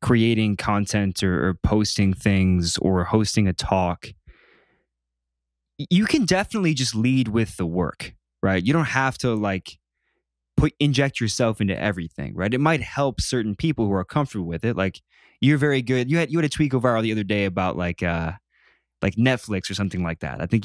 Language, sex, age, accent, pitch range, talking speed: English, male, 20-39, American, 95-130 Hz, 190 wpm